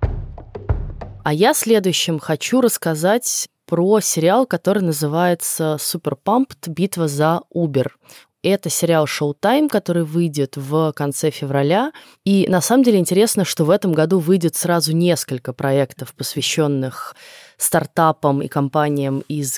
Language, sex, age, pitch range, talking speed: Russian, female, 20-39, 145-190 Hz, 120 wpm